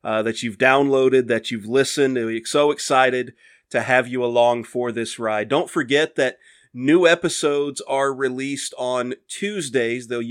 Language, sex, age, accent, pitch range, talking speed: English, male, 30-49, American, 125-145 Hz, 155 wpm